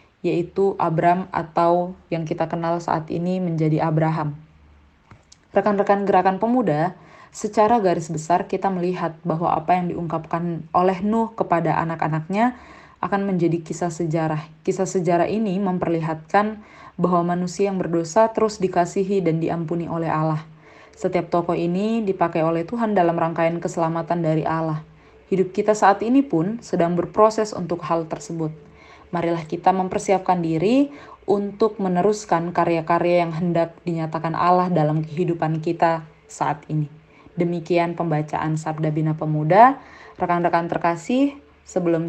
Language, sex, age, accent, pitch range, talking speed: Indonesian, female, 20-39, native, 160-185 Hz, 125 wpm